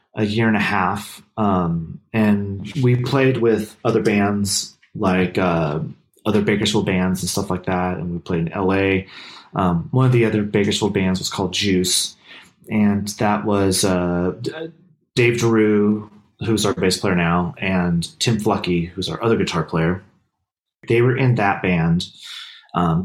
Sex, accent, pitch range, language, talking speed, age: male, American, 90-110 Hz, English, 160 wpm, 30-49